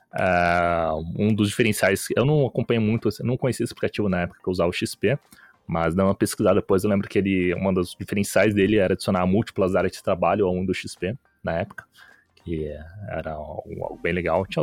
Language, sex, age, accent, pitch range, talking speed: Portuguese, male, 20-39, Brazilian, 95-125 Hz, 215 wpm